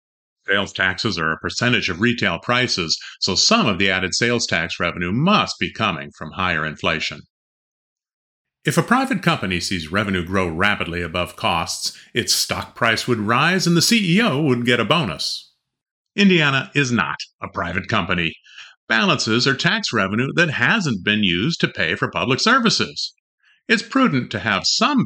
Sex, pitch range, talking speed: male, 90-130 Hz, 165 wpm